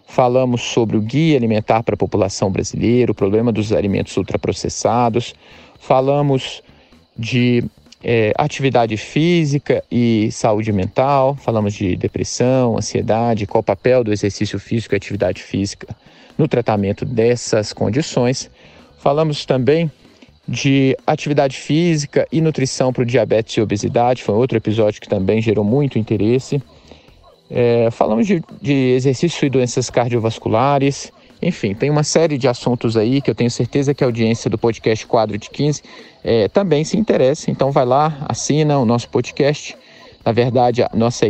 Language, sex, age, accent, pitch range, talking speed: Portuguese, male, 40-59, Brazilian, 115-140 Hz, 140 wpm